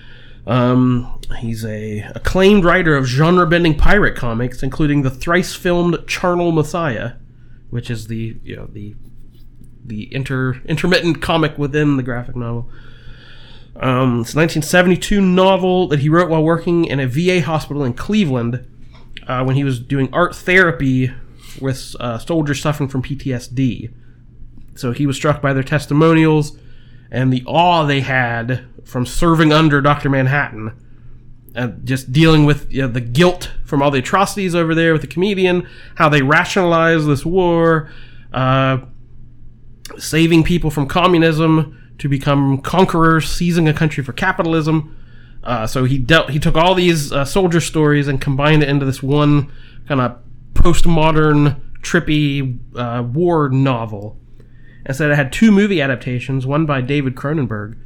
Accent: American